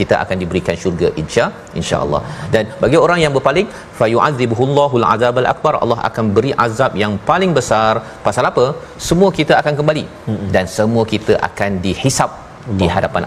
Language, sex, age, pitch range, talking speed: Malayalam, male, 40-59, 95-120 Hz, 160 wpm